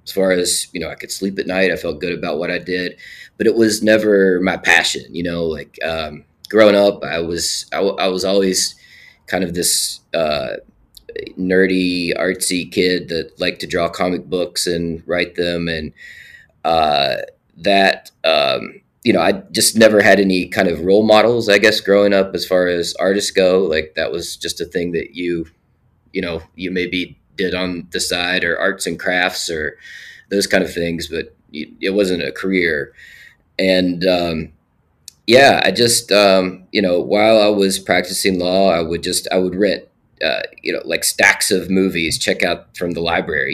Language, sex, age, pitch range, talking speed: English, male, 20-39, 85-95 Hz, 190 wpm